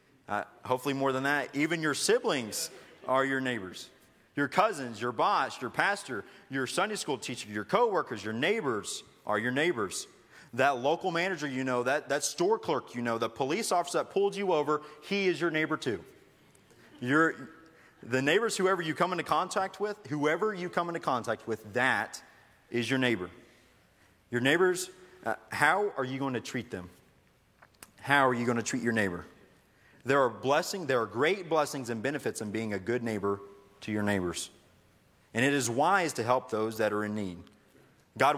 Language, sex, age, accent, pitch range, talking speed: English, male, 30-49, American, 115-150 Hz, 185 wpm